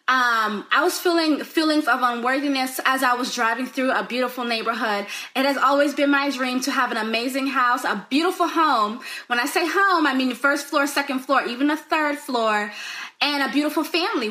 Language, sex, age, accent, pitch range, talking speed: English, female, 20-39, American, 250-310 Hz, 200 wpm